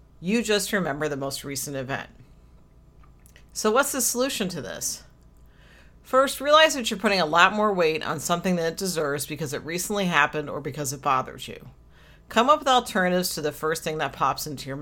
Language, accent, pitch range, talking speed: English, American, 145-195 Hz, 195 wpm